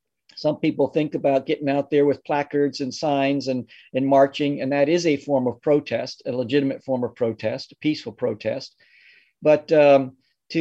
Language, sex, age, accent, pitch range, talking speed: English, male, 50-69, American, 135-165 Hz, 180 wpm